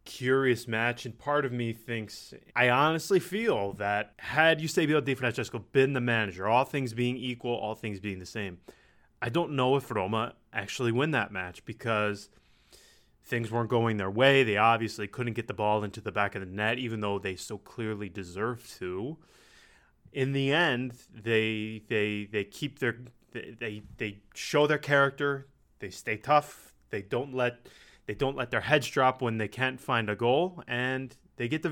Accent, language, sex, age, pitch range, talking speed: American, English, male, 20-39, 110-135 Hz, 185 wpm